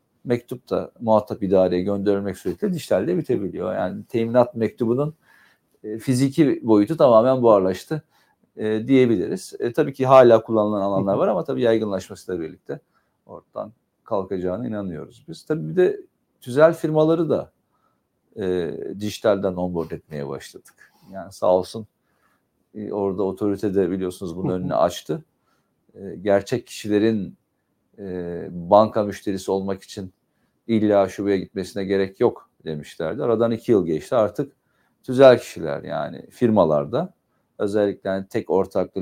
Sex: male